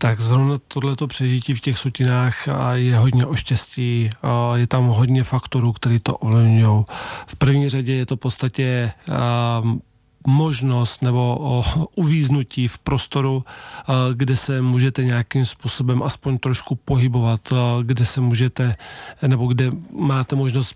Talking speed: 125 wpm